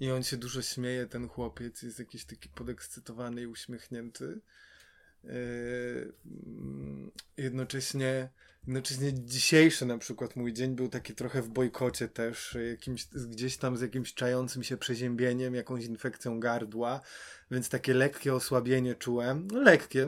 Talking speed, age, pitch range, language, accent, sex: 130 wpm, 20-39, 120-140 Hz, Polish, native, male